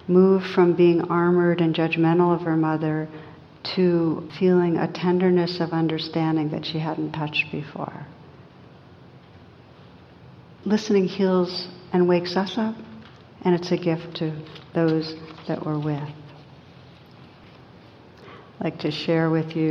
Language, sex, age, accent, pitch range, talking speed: English, female, 60-79, American, 160-185 Hz, 125 wpm